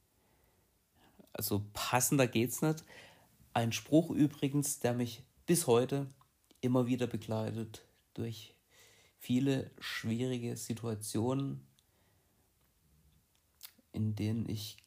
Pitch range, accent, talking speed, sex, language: 95-120 Hz, German, 85 wpm, male, German